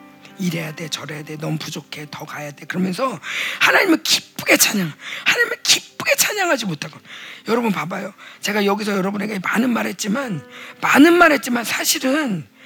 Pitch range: 215-300 Hz